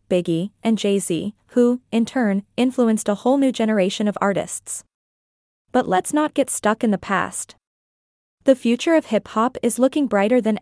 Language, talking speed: English, 165 wpm